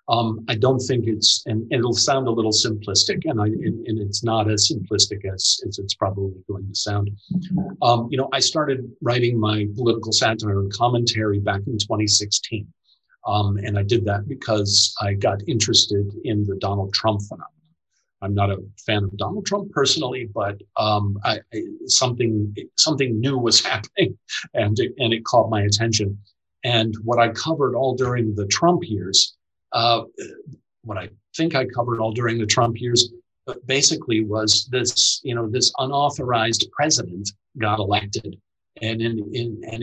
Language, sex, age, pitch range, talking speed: English, male, 40-59, 105-120 Hz, 165 wpm